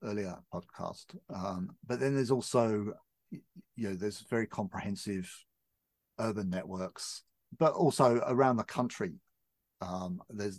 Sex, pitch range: male, 95-125 Hz